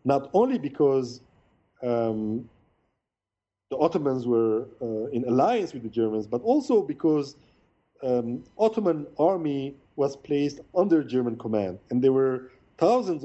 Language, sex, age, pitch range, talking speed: English, male, 40-59, 115-145 Hz, 130 wpm